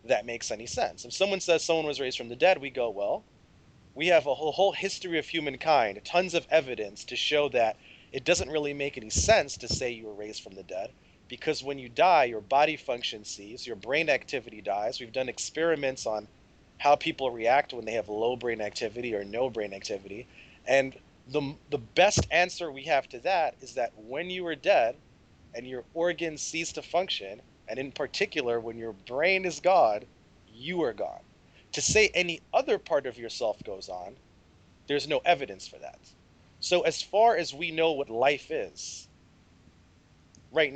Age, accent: 30-49, American